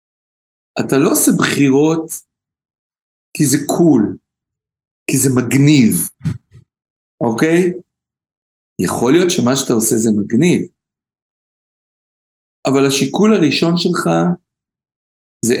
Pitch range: 115-135 Hz